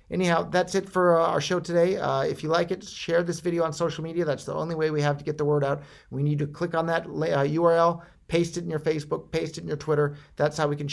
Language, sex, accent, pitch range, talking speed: English, male, American, 115-155 Hz, 280 wpm